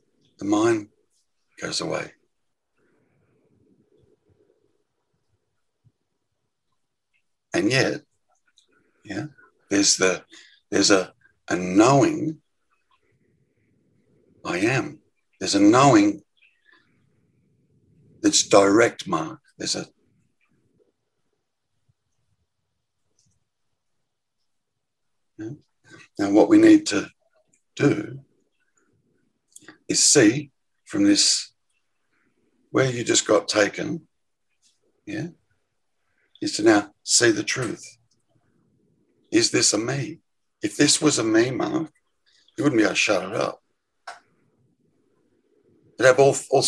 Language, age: English, 60-79